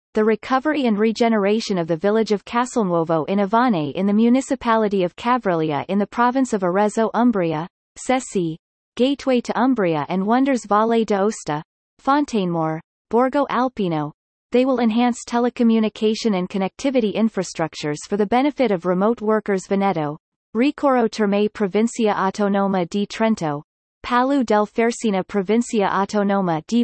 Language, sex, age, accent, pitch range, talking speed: English, female, 30-49, American, 185-240 Hz, 135 wpm